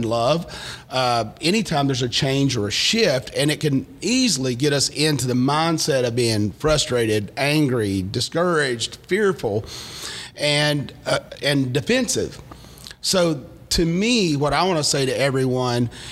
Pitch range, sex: 125-160 Hz, male